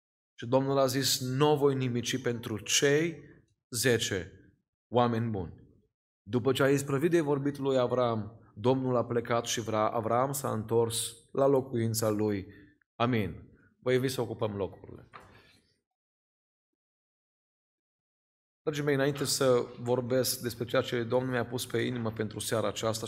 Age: 30-49